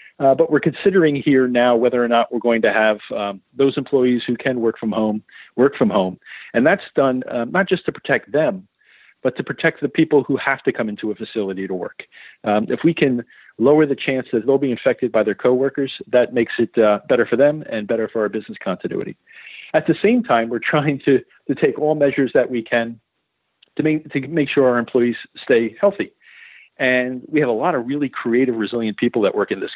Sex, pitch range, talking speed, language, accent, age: male, 115-140 Hz, 225 wpm, English, American, 40-59